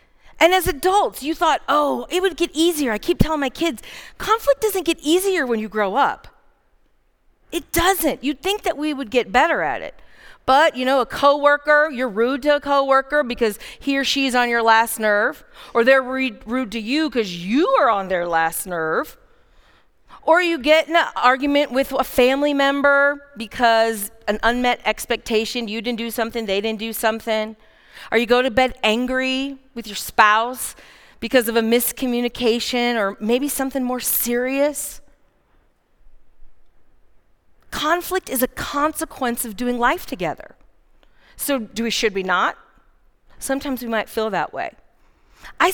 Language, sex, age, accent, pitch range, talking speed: English, female, 40-59, American, 230-295 Hz, 165 wpm